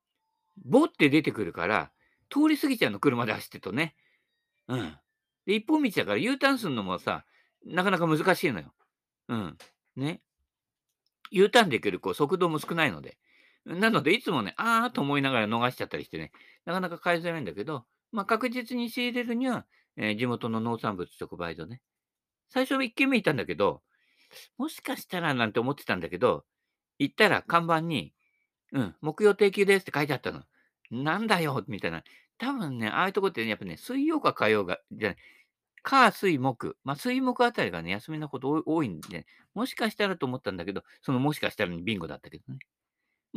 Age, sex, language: 50-69, male, Japanese